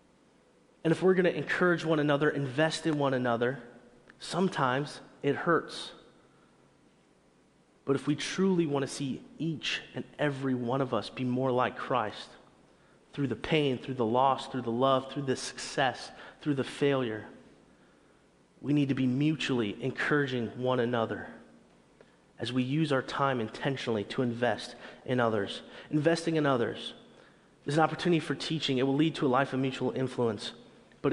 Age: 30-49